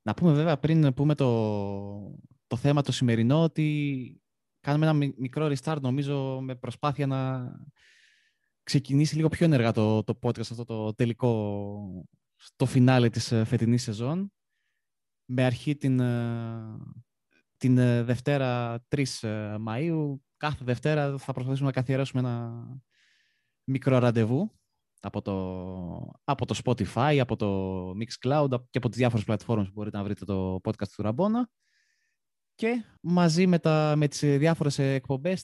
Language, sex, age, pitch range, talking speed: Greek, male, 20-39, 120-150 Hz, 135 wpm